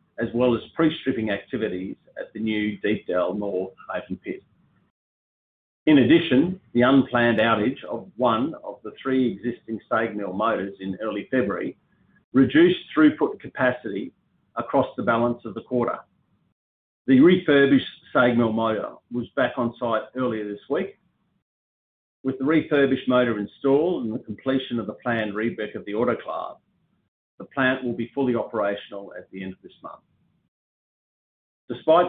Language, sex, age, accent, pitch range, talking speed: English, male, 50-69, Australian, 105-130 Hz, 145 wpm